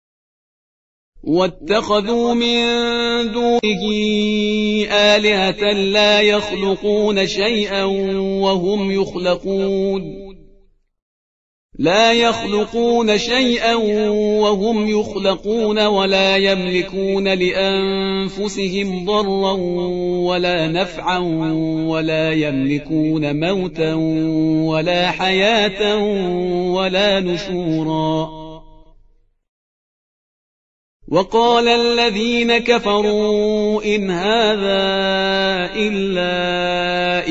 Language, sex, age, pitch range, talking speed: Persian, male, 40-59, 180-215 Hz, 55 wpm